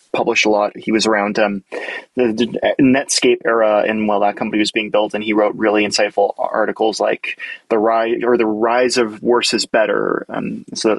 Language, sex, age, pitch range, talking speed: English, male, 20-39, 105-125 Hz, 200 wpm